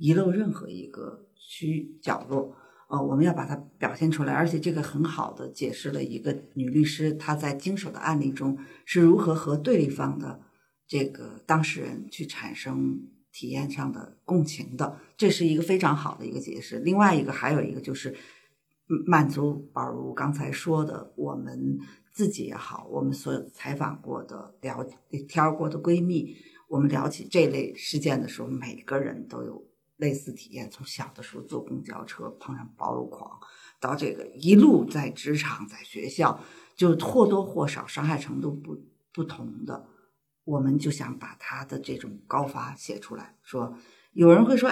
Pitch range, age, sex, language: 135-165 Hz, 50-69, female, Chinese